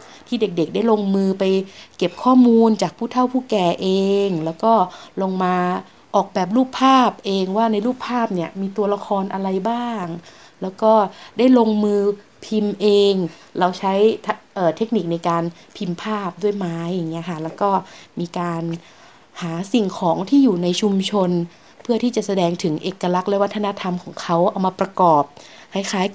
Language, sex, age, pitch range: Thai, female, 20-39, 175-220 Hz